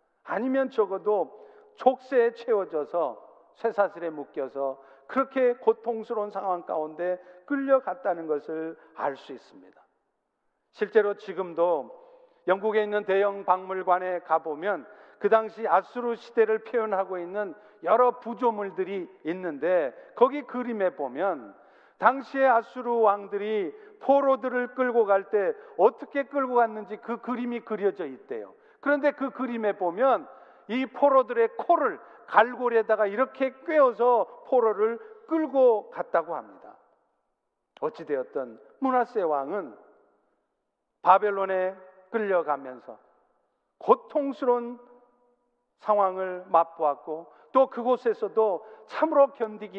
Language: Korean